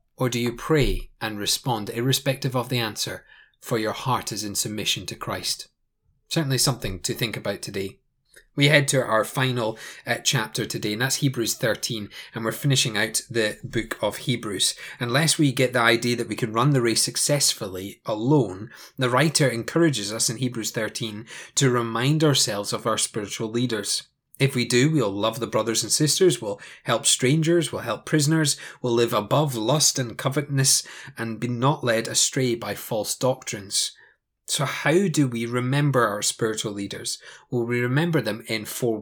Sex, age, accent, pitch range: male, 30-49, British, 115-140 Hz